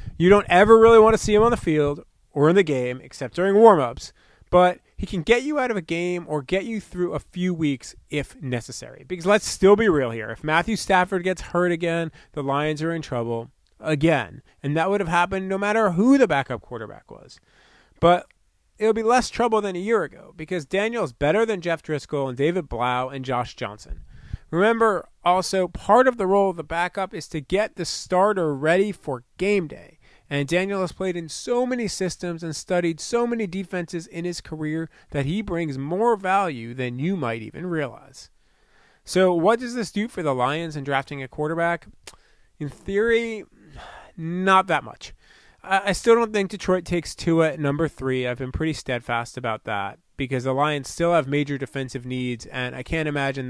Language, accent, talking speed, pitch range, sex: English, American, 200 wpm, 135-190 Hz, male